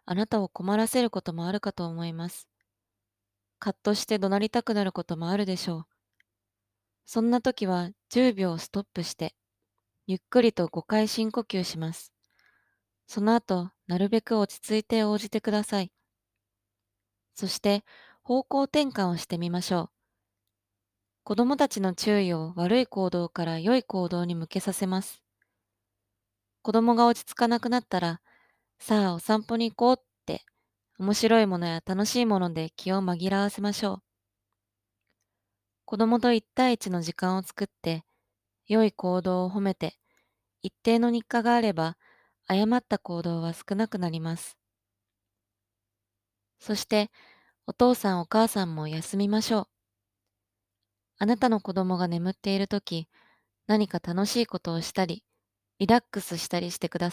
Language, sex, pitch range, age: Japanese, female, 155-215 Hz, 20-39